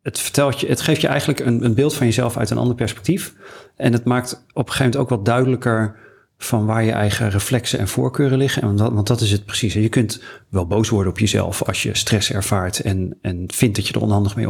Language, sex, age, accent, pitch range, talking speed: Dutch, male, 40-59, Dutch, 105-125 Hz, 240 wpm